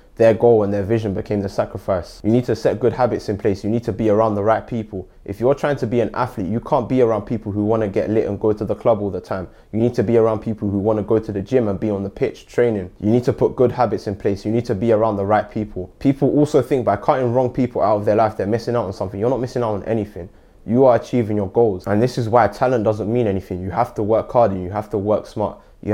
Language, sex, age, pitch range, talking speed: English, male, 20-39, 100-120 Hz, 305 wpm